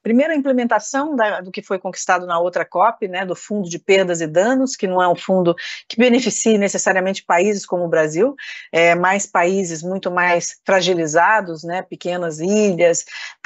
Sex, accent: female, Brazilian